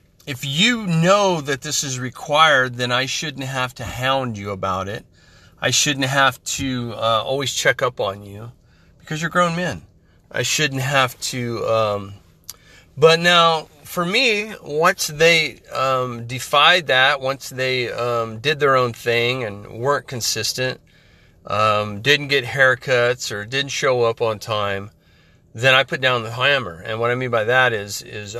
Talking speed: 165 wpm